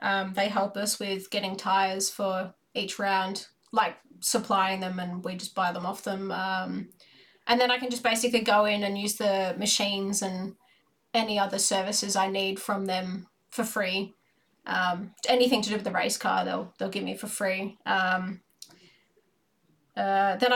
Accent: Australian